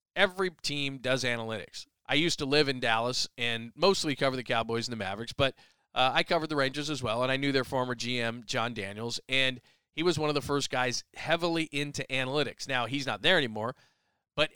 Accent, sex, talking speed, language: American, male, 210 wpm, English